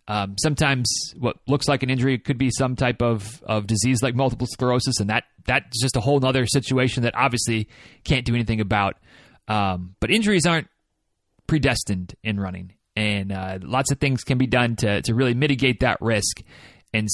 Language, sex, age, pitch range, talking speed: English, male, 30-49, 120-170 Hz, 185 wpm